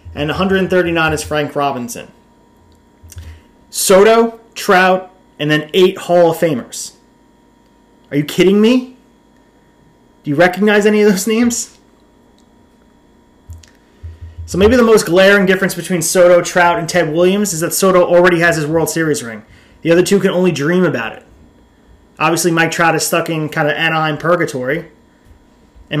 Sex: male